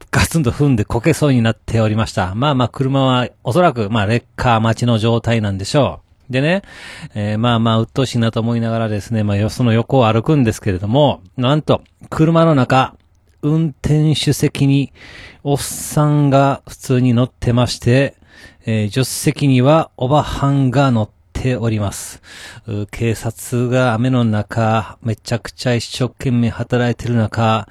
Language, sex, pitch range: Japanese, male, 110-130 Hz